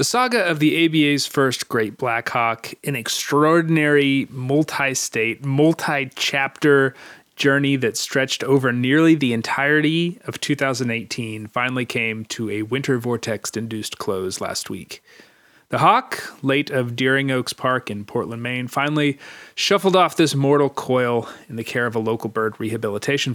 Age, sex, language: 30-49, male, English